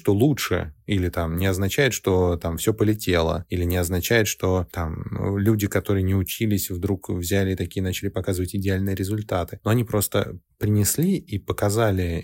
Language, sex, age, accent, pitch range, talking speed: Russian, male, 20-39, native, 90-110 Hz, 160 wpm